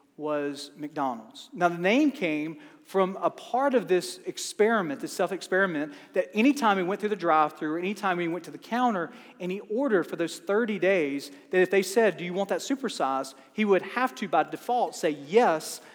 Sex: male